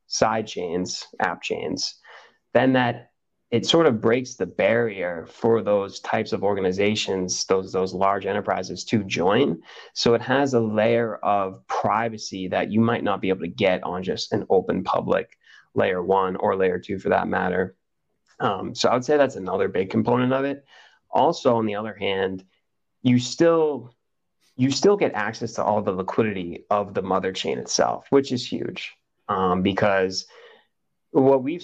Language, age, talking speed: English, 20-39, 170 wpm